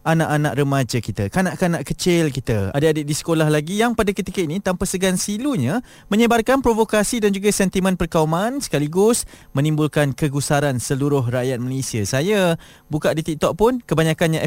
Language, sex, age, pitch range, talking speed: Malay, male, 20-39, 130-170 Hz, 145 wpm